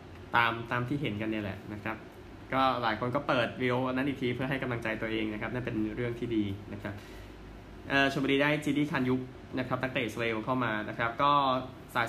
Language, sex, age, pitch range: Thai, male, 20-39, 110-130 Hz